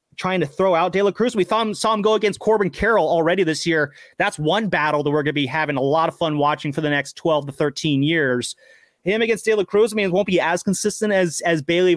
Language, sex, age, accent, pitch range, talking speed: English, male, 30-49, American, 160-220 Hz, 275 wpm